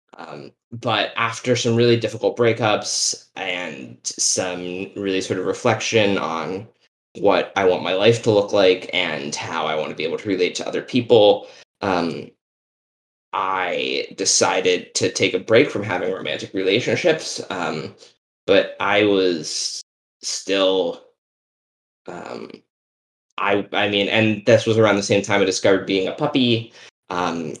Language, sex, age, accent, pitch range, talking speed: English, male, 10-29, American, 95-135 Hz, 145 wpm